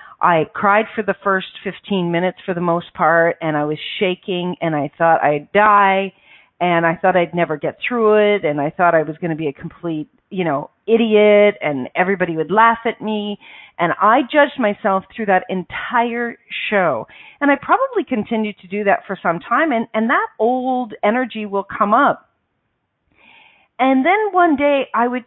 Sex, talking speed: female, 190 wpm